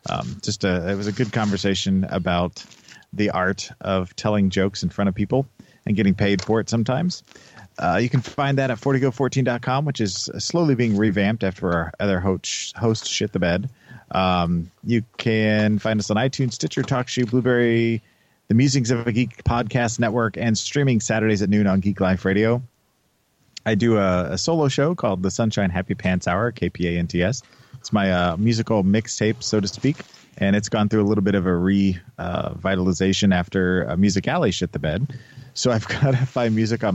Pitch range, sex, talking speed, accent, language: 95-120 Hz, male, 195 wpm, American, English